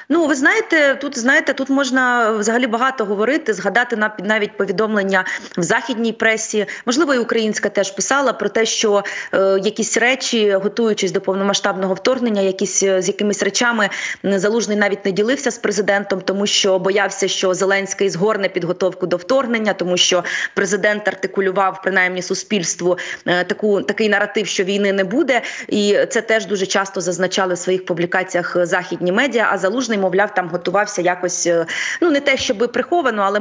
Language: Ukrainian